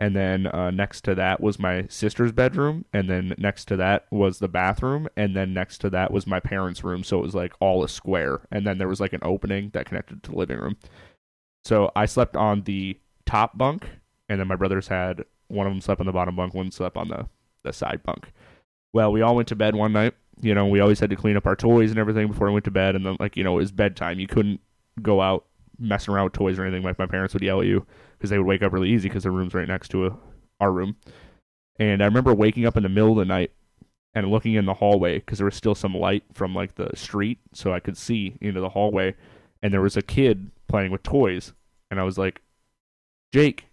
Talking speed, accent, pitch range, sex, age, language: 255 wpm, American, 95-110 Hz, male, 20-39, English